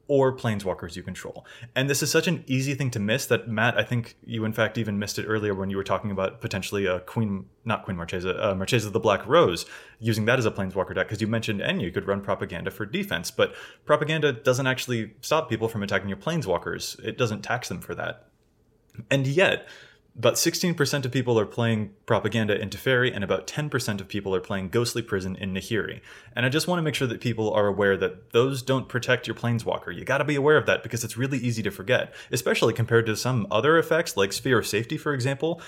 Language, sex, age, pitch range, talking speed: English, male, 20-39, 100-130 Hz, 230 wpm